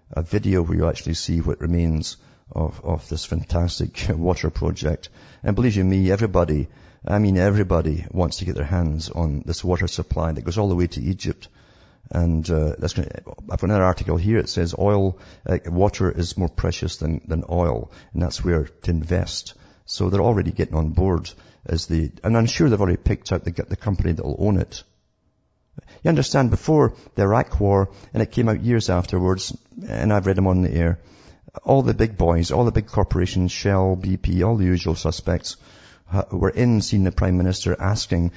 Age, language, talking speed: 50-69, English, 195 wpm